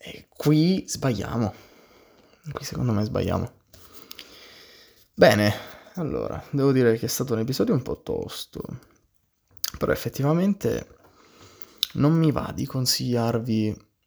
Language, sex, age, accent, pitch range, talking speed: Italian, male, 20-39, native, 100-130 Hz, 105 wpm